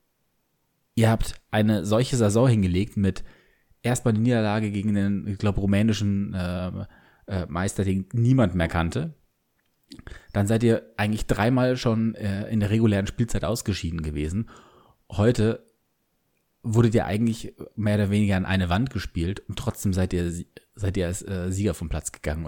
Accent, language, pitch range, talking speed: German, German, 90-110 Hz, 155 wpm